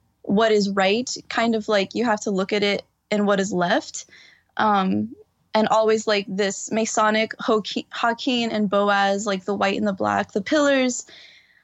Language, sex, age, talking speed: English, female, 10-29, 170 wpm